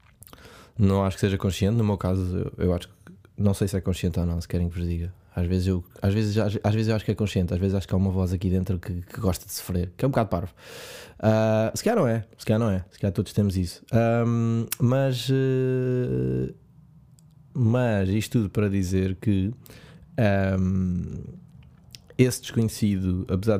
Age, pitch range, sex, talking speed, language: 20-39, 95-115 Hz, male, 210 wpm, Portuguese